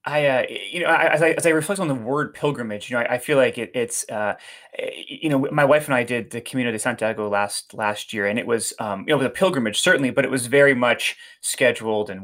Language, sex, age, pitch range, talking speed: English, male, 30-49, 120-155 Hz, 255 wpm